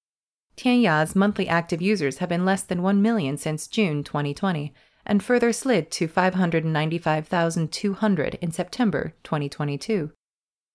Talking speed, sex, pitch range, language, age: 115 wpm, female, 155-210 Hz, English, 30-49